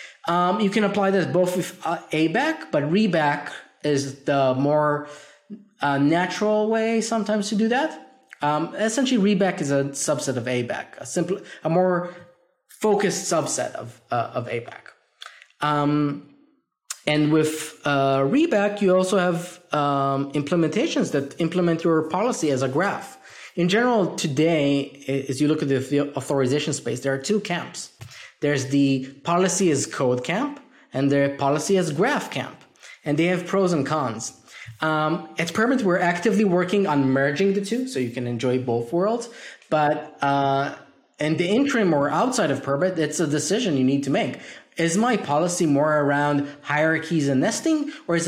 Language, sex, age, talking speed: English, male, 20-39, 160 wpm